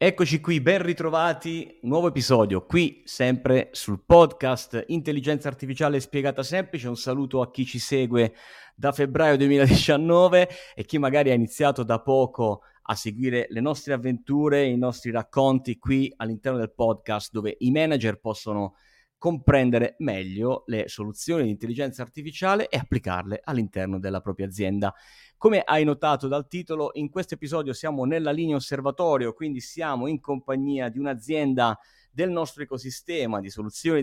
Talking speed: 145 wpm